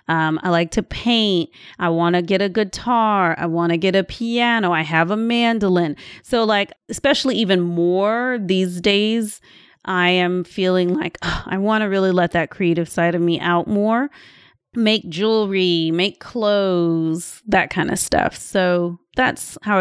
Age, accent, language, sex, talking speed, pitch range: 30-49, American, English, female, 165 wpm, 175-215 Hz